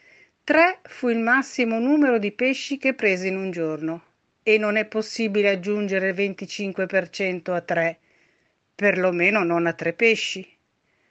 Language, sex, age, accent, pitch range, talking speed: Italian, female, 50-69, native, 180-235 Hz, 140 wpm